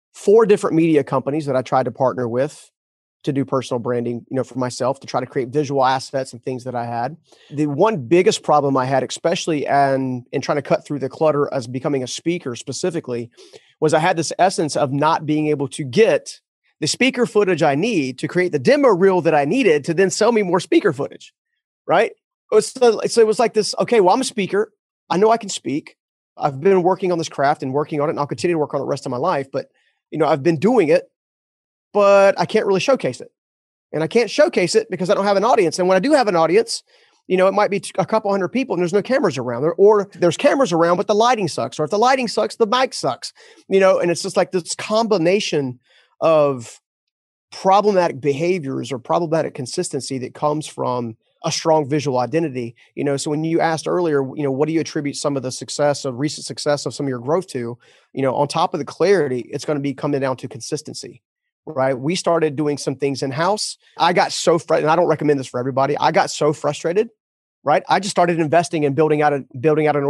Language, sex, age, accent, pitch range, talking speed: English, male, 30-49, American, 140-195 Hz, 235 wpm